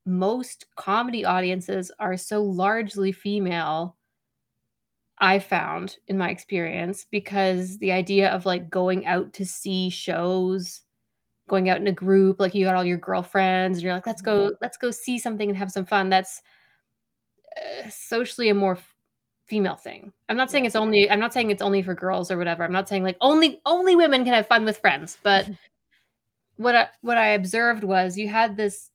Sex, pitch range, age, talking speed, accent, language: female, 185-220 Hz, 20-39, 185 wpm, American, English